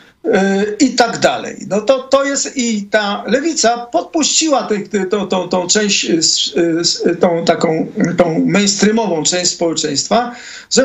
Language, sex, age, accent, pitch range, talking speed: Polish, male, 50-69, native, 165-230 Hz, 125 wpm